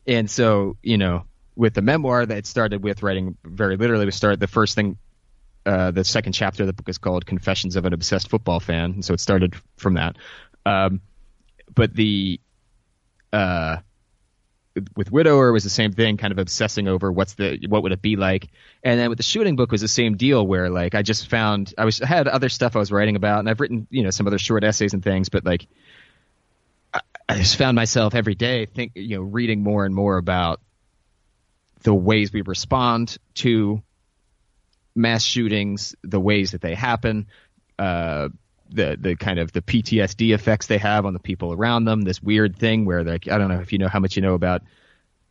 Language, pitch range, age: English, 95-110 Hz, 20-39